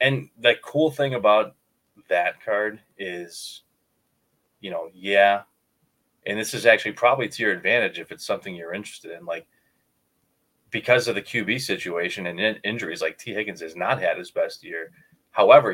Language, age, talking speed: English, 30-49, 165 wpm